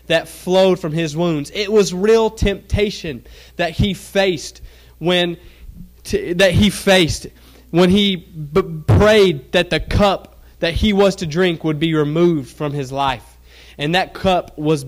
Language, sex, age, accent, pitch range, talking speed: English, male, 20-39, American, 145-185 Hz, 155 wpm